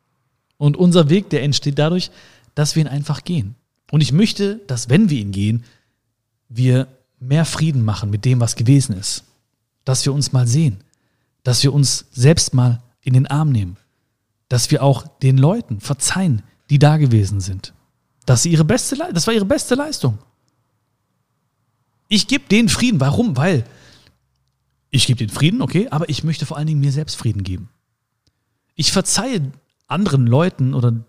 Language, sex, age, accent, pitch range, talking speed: German, male, 40-59, German, 115-155 Hz, 170 wpm